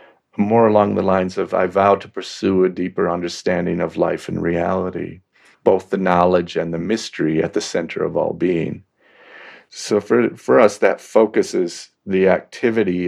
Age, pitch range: 40-59, 90-105 Hz